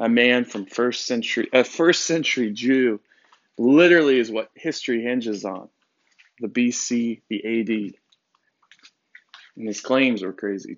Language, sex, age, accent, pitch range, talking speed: English, male, 20-39, American, 110-130 Hz, 135 wpm